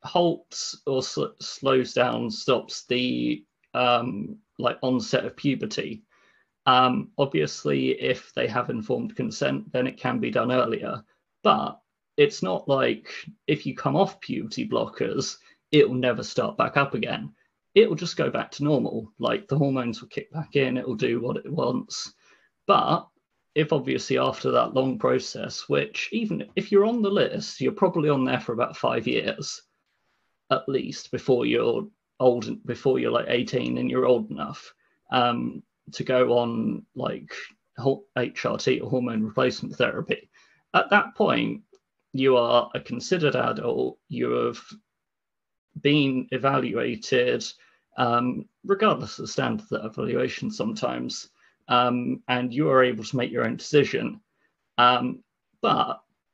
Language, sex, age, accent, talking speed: English, male, 30-49, British, 145 wpm